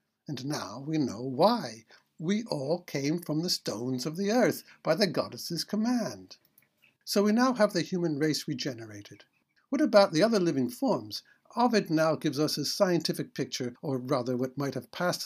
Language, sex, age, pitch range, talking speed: English, male, 60-79, 130-175 Hz, 175 wpm